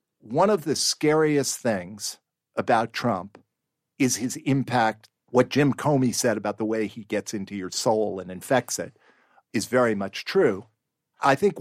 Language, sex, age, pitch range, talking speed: English, male, 50-69, 115-165 Hz, 160 wpm